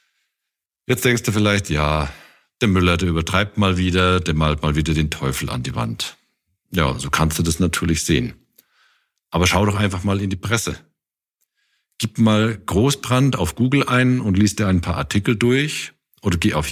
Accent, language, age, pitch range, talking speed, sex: German, German, 50-69, 85-105 Hz, 185 wpm, male